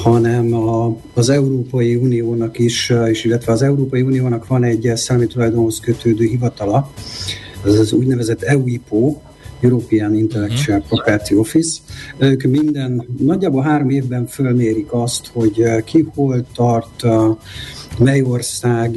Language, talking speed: Hungarian, 115 wpm